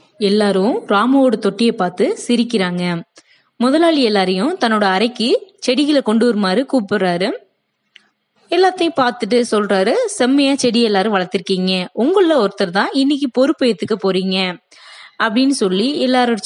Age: 20-39